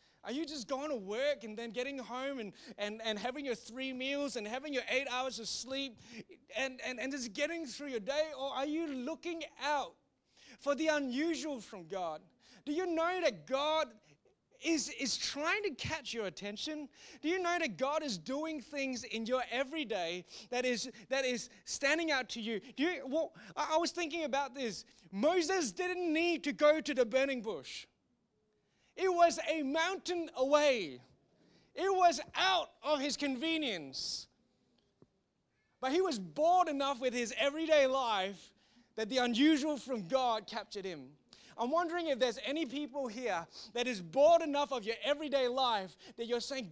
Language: English